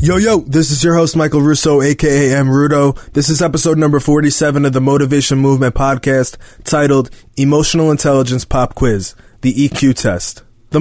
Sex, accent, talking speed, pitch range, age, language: male, American, 165 wpm, 125-150 Hz, 20-39, English